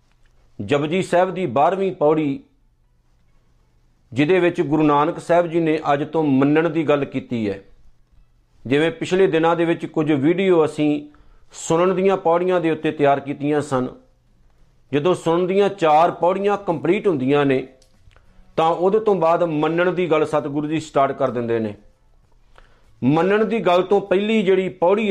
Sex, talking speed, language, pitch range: male, 150 wpm, Punjabi, 145-180 Hz